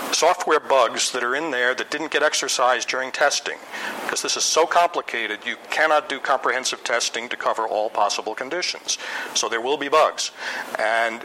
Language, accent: English, American